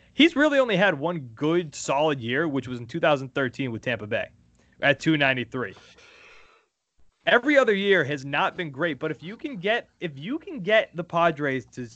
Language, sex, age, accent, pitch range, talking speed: English, male, 20-39, American, 135-205 Hz, 180 wpm